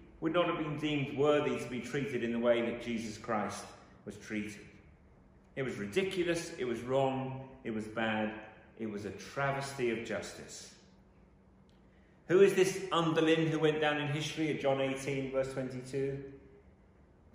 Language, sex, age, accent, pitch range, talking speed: English, male, 40-59, British, 115-180 Hz, 160 wpm